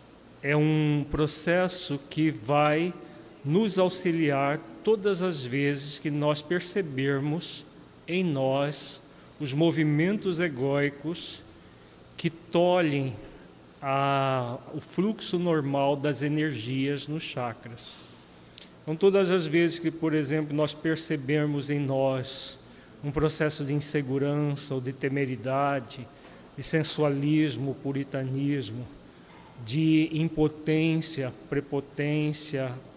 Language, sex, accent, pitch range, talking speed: Portuguese, male, Brazilian, 140-160 Hz, 95 wpm